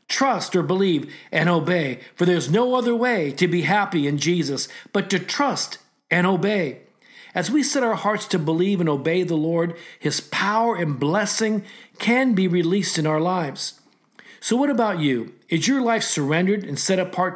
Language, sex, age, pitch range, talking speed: English, male, 50-69, 150-205 Hz, 180 wpm